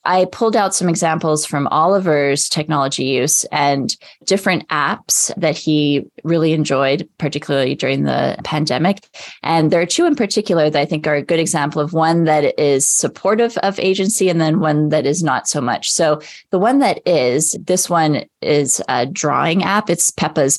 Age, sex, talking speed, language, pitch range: 20-39, female, 180 wpm, English, 155-190 Hz